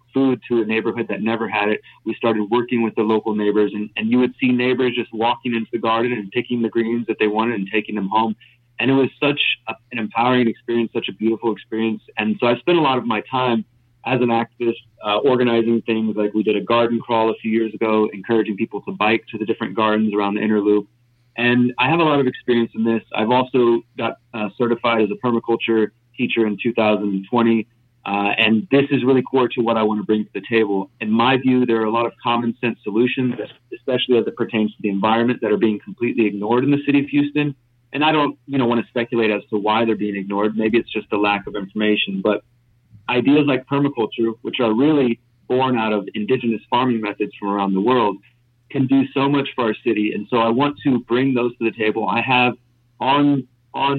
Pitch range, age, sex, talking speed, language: 110-125 Hz, 30-49, male, 230 wpm, English